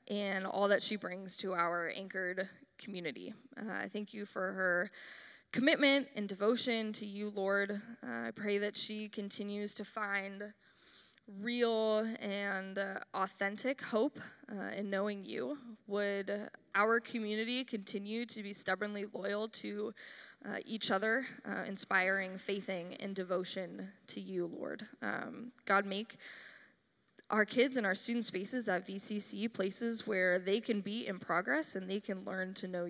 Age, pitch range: 10-29, 190-220 Hz